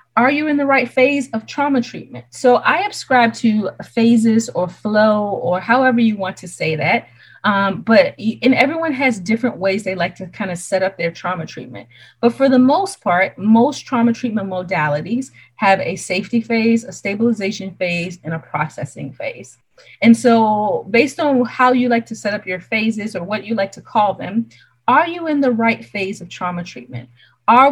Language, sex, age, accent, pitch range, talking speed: English, female, 30-49, American, 185-250 Hz, 195 wpm